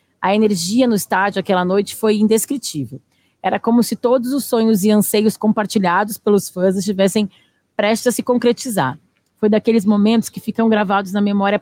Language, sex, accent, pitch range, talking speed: Portuguese, female, Brazilian, 190-230 Hz, 165 wpm